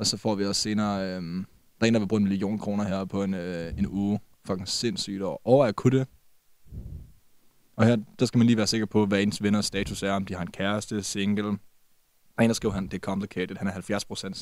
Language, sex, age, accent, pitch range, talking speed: Danish, male, 20-39, native, 100-110 Hz, 235 wpm